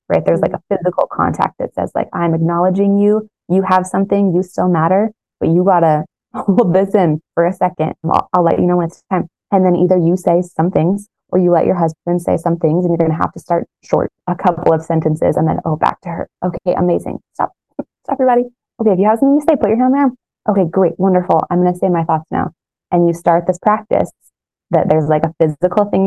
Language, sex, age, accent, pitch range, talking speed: English, female, 20-39, American, 170-210 Hz, 235 wpm